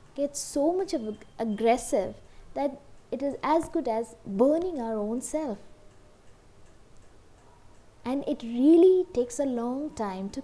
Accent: Indian